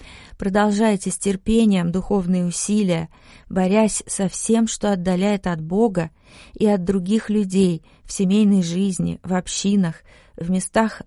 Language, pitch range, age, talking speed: Russian, 180-210 Hz, 30-49, 125 wpm